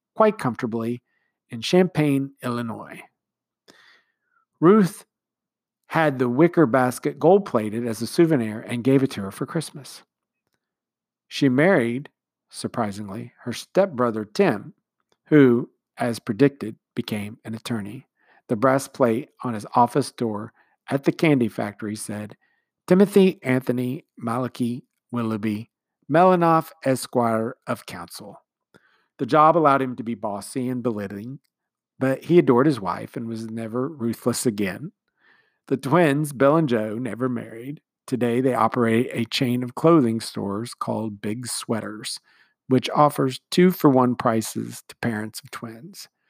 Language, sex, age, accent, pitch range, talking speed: English, male, 50-69, American, 115-150 Hz, 125 wpm